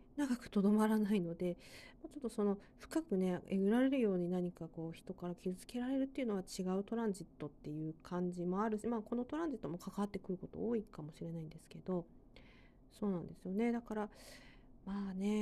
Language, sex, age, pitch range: Japanese, female, 40-59, 180-215 Hz